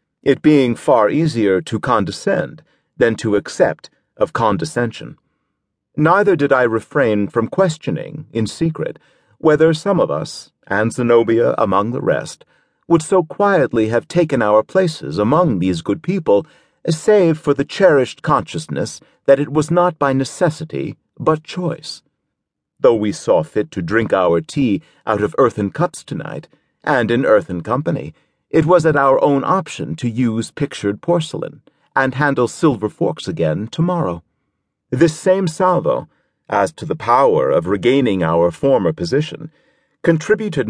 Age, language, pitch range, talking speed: 40-59, English, 115-170 Hz, 145 wpm